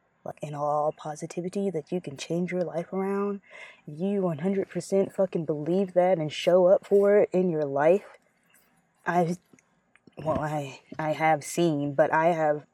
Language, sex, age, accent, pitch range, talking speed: English, female, 20-39, American, 165-205 Hz, 155 wpm